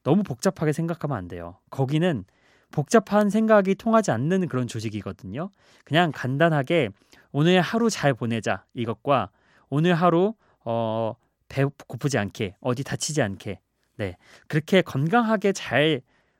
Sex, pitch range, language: male, 120-175 Hz, Korean